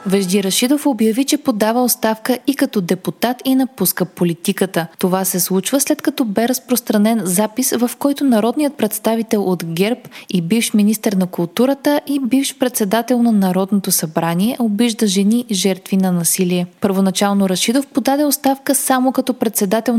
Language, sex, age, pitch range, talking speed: Bulgarian, female, 20-39, 190-245 Hz, 150 wpm